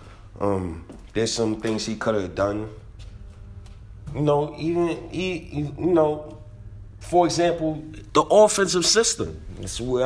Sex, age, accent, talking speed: male, 20-39, American, 120 wpm